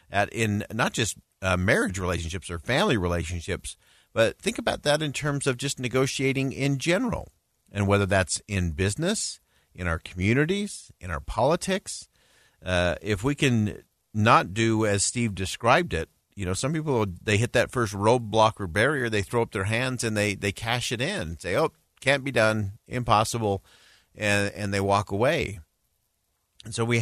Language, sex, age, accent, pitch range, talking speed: English, male, 50-69, American, 90-115 Hz, 175 wpm